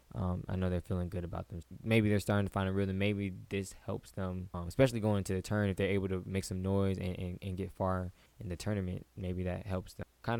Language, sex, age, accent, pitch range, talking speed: English, male, 10-29, American, 90-100 Hz, 260 wpm